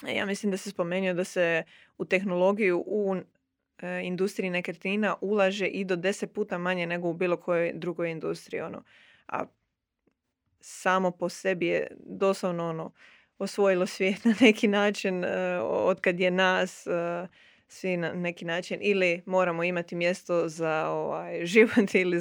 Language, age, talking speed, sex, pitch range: Croatian, 20-39, 150 wpm, female, 175-195 Hz